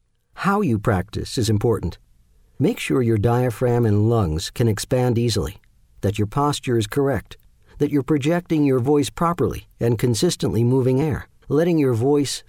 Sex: male